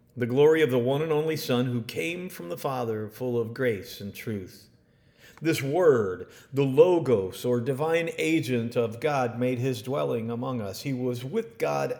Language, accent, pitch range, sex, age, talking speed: English, American, 115-155 Hz, male, 50-69, 180 wpm